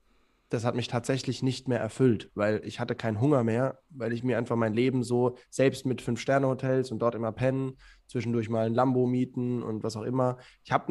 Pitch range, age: 110-130 Hz, 10-29